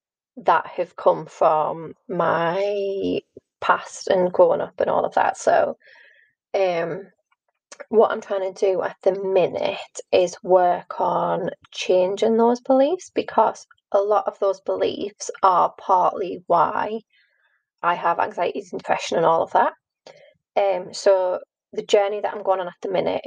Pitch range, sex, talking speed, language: 195-305 Hz, female, 150 wpm, English